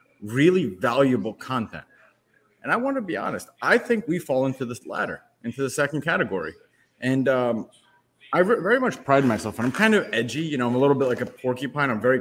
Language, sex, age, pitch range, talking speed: English, male, 30-49, 110-140 Hz, 215 wpm